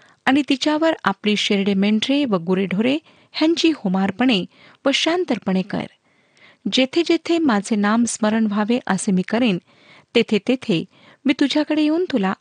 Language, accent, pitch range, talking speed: Marathi, native, 195-280 Hz, 130 wpm